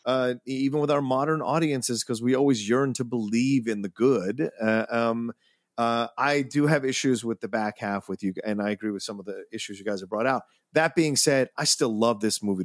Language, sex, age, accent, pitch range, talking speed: English, male, 30-49, American, 110-145 Hz, 235 wpm